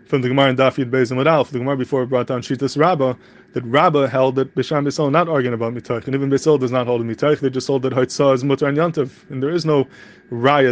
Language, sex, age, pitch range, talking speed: English, male, 20-39, 125-145 Hz, 255 wpm